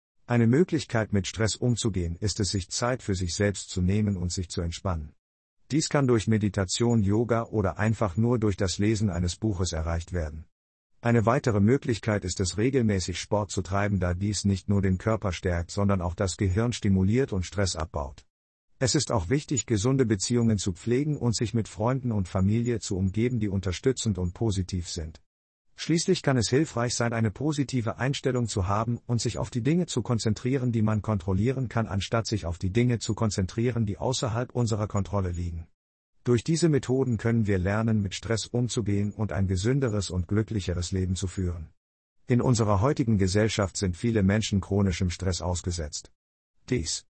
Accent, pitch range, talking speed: German, 95-120 Hz, 175 wpm